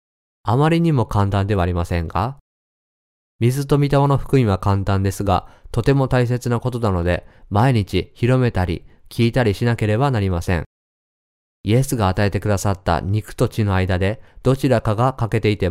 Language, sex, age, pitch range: Japanese, male, 20-39, 90-120 Hz